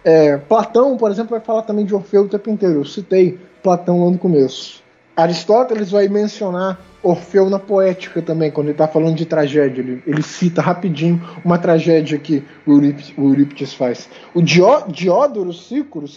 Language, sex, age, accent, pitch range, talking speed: Portuguese, male, 20-39, Brazilian, 160-225 Hz, 170 wpm